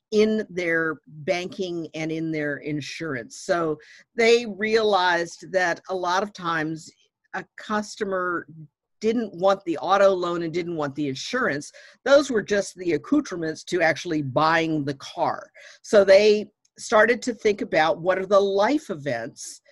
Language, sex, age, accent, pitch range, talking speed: Polish, female, 50-69, American, 160-205 Hz, 145 wpm